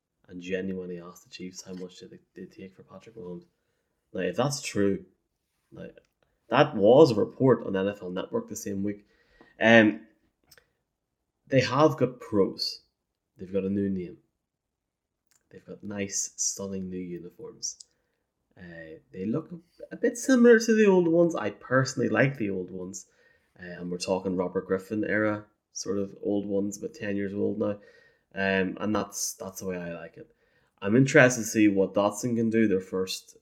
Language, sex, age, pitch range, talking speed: English, male, 20-39, 90-115 Hz, 175 wpm